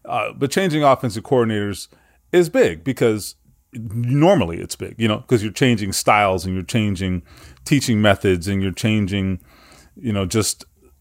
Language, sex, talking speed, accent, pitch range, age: English, male, 155 wpm, American, 100-130 Hz, 30-49